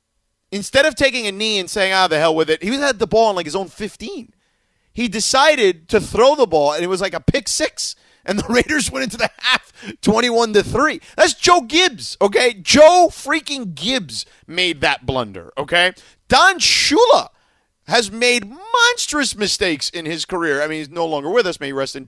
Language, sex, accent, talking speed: English, male, American, 200 wpm